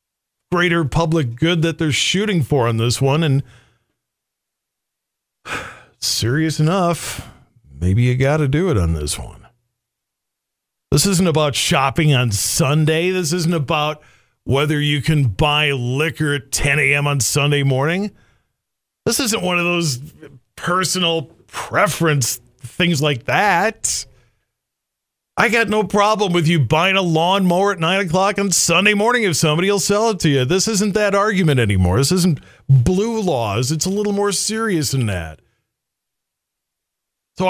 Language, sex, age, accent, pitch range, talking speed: English, male, 50-69, American, 125-180 Hz, 145 wpm